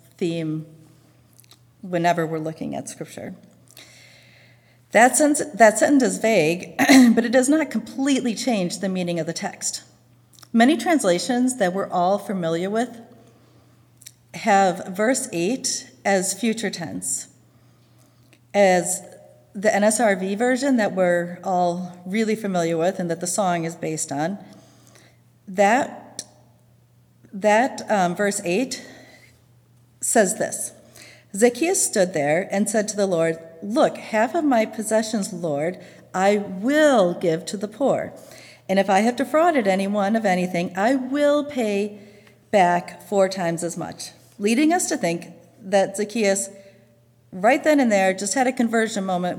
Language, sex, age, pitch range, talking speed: English, female, 40-59, 165-225 Hz, 135 wpm